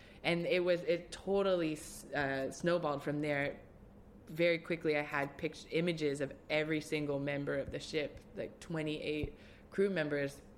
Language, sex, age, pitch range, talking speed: English, female, 20-39, 140-165 Hz, 145 wpm